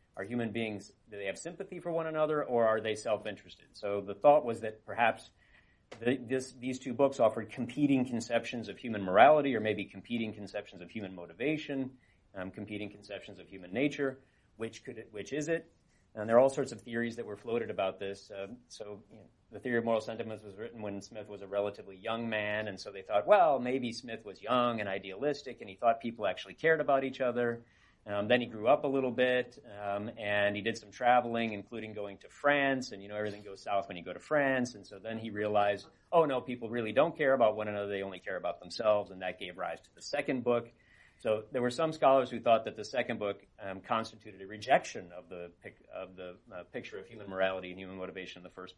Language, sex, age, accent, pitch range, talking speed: English, male, 30-49, American, 100-120 Hz, 230 wpm